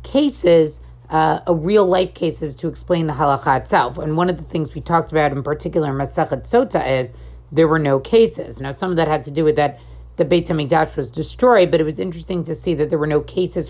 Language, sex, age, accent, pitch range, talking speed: English, female, 40-59, American, 155-185 Hz, 230 wpm